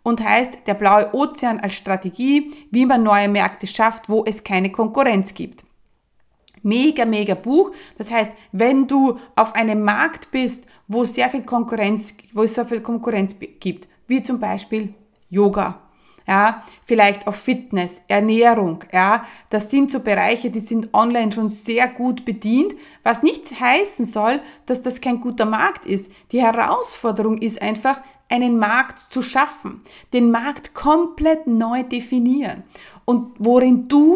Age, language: 30-49, German